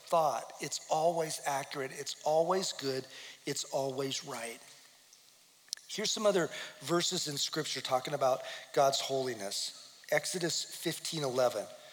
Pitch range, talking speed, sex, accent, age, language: 135-170 Hz, 115 wpm, male, American, 40-59, English